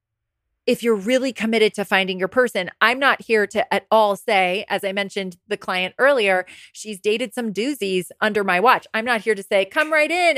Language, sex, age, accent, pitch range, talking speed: English, female, 20-39, American, 210-275 Hz, 210 wpm